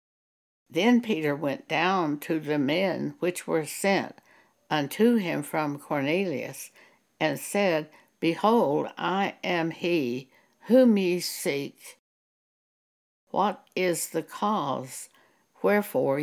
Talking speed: 105 wpm